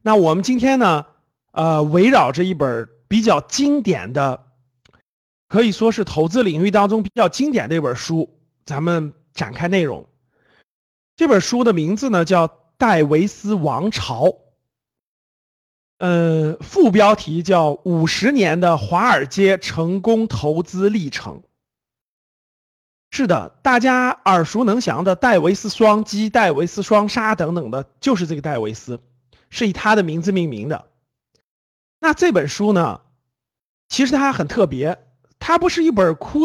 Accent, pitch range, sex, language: native, 160-230 Hz, male, Chinese